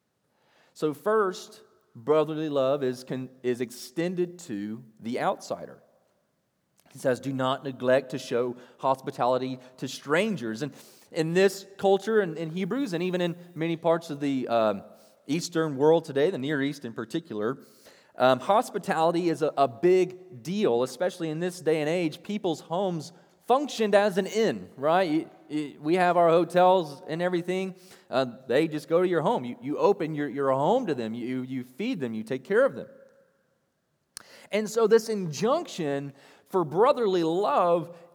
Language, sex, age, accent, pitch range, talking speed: English, male, 30-49, American, 140-200 Hz, 160 wpm